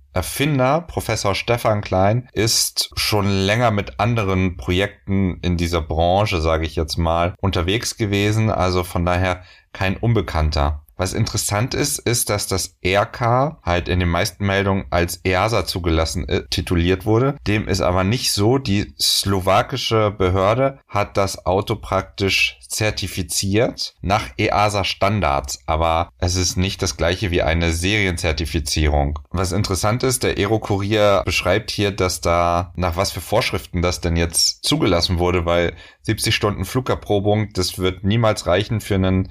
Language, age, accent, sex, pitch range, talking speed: German, 30-49, German, male, 90-110 Hz, 145 wpm